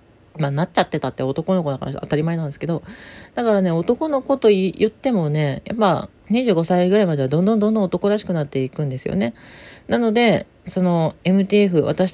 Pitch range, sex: 160-215 Hz, female